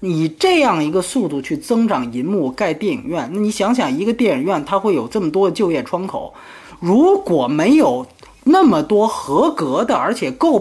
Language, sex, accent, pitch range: Chinese, male, native, 175-280 Hz